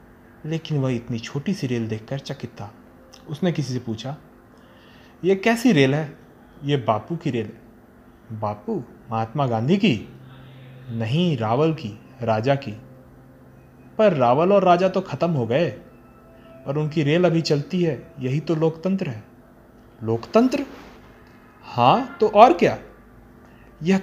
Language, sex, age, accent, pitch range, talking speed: Hindi, male, 30-49, native, 120-170 Hz, 135 wpm